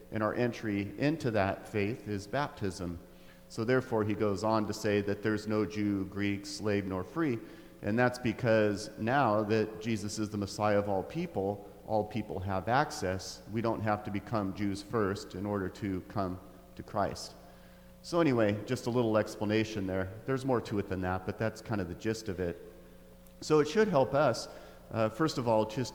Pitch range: 100-115 Hz